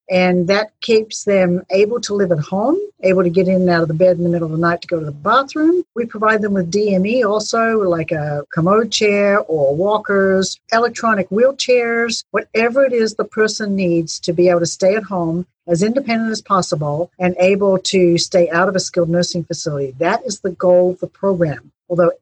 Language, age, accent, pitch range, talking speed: English, 50-69, American, 170-205 Hz, 210 wpm